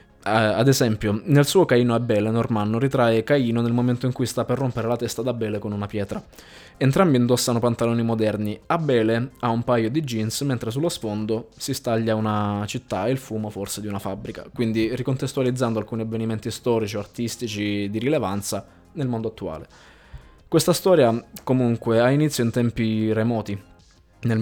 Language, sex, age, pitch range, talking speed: Italian, male, 20-39, 110-130 Hz, 165 wpm